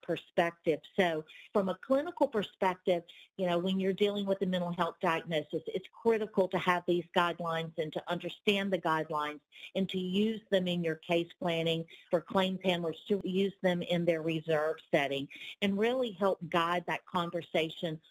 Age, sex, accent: 50-69, female, American